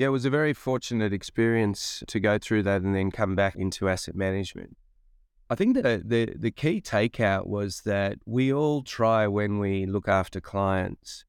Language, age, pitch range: English, 30-49, 90-110 Hz